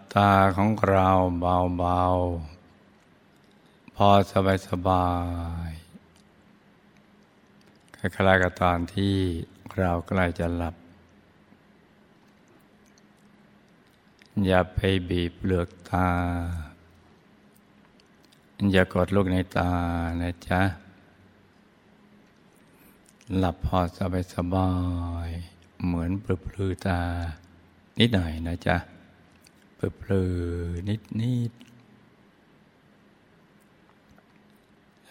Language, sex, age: Thai, male, 60-79